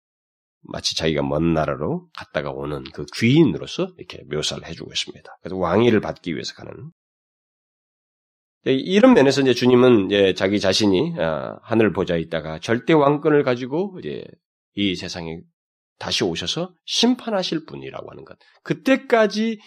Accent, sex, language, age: native, male, Korean, 30-49